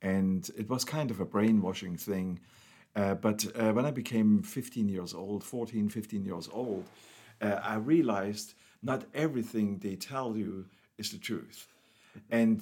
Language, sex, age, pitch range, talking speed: English, male, 60-79, 105-125 Hz, 155 wpm